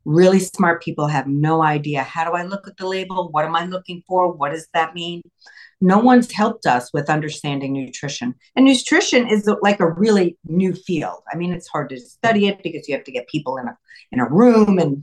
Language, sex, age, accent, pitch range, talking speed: English, female, 50-69, American, 155-220 Hz, 225 wpm